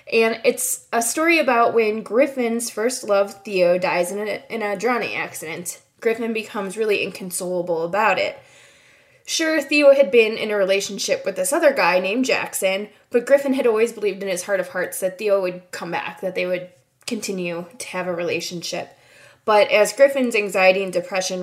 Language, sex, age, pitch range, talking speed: English, female, 20-39, 185-250 Hz, 180 wpm